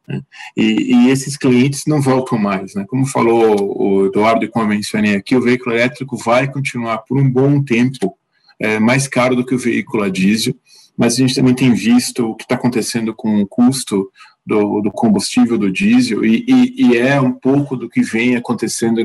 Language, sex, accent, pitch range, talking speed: Portuguese, male, Brazilian, 105-135 Hz, 200 wpm